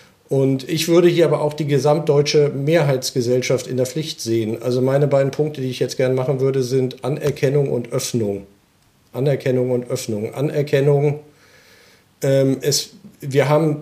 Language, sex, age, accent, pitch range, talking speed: German, male, 40-59, German, 120-150 Hz, 150 wpm